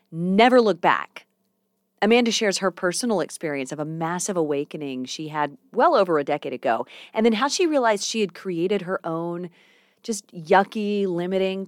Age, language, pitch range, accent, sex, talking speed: 30-49, English, 165-220 Hz, American, female, 165 wpm